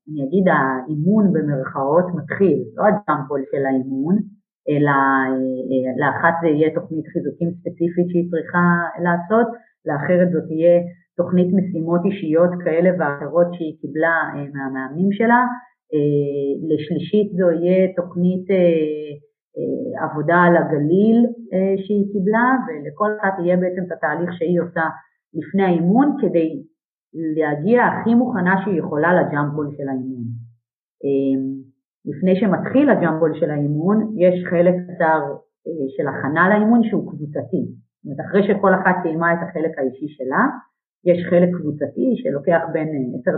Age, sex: 30-49, female